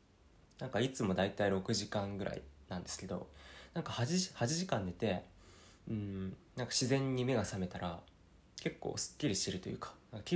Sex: male